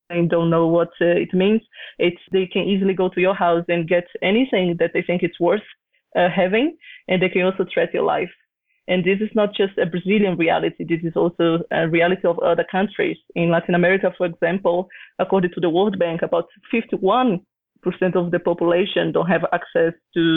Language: English